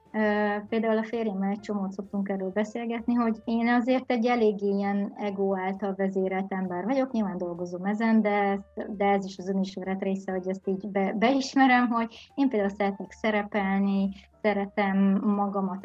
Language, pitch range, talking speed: Hungarian, 195-230 Hz, 155 wpm